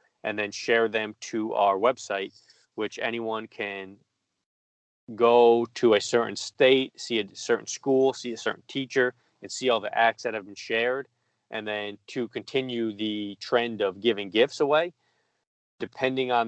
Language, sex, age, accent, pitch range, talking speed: English, male, 20-39, American, 105-125 Hz, 160 wpm